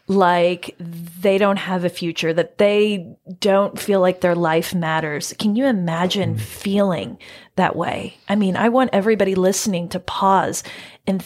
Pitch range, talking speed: 180-205 Hz, 155 wpm